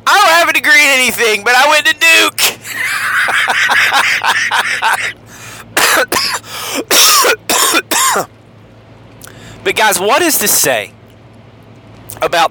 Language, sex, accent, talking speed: English, male, American, 90 wpm